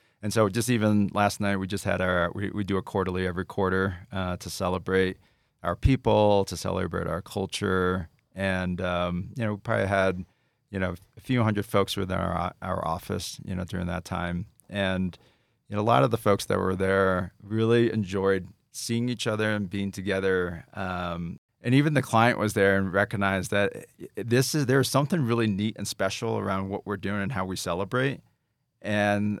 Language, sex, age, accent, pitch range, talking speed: English, male, 40-59, American, 95-115 Hz, 190 wpm